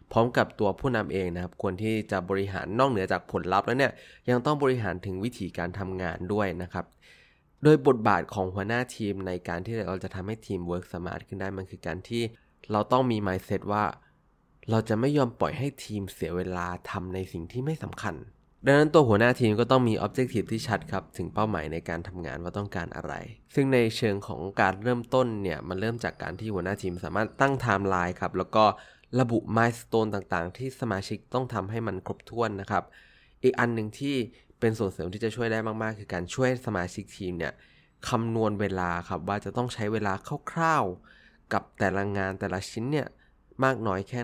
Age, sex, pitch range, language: 20-39, male, 95-120 Hz, Thai